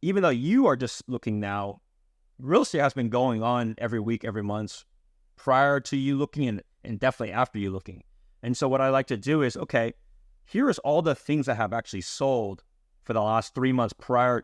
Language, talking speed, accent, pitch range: English, 205 wpm, American, 110-135 Hz